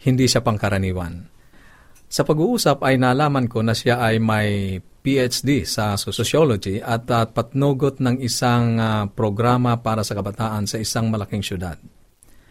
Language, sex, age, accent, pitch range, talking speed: Filipino, male, 40-59, native, 105-130 Hz, 130 wpm